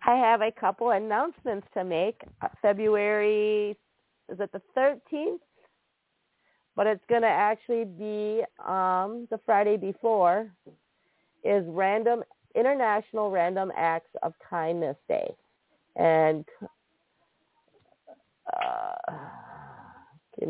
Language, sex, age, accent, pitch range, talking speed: English, female, 50-69, American, 185-235 Hz, 100 wpm